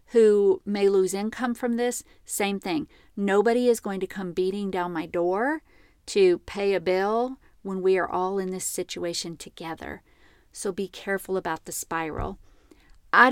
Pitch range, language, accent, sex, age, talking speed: 180-220 Hz, English, American, female, 40-59, 160 wpm